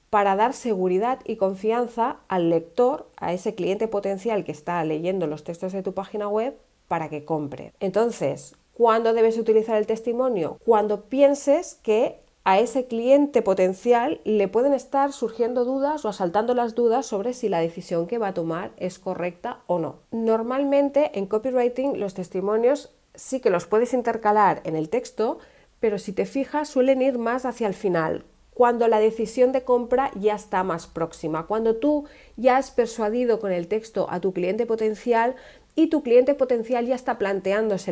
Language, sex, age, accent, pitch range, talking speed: Spanish, female, 40-59, Spanish, 185-245 Hz, 170 wpm